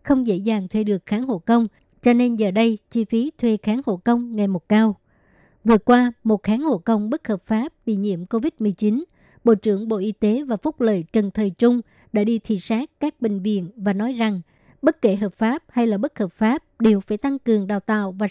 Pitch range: 210-235 Hz